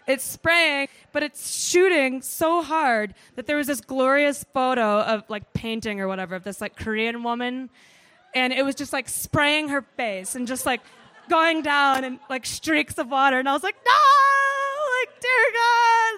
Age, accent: 20-39, American